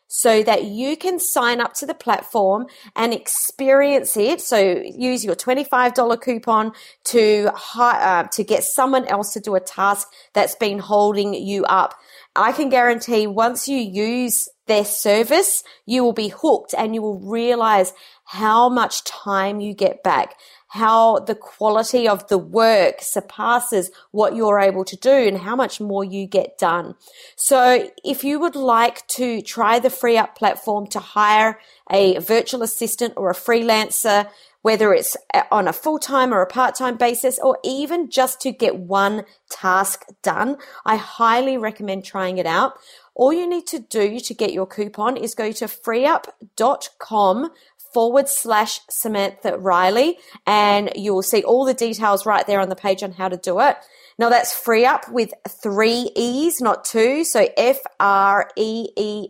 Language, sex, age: English, female, 30-49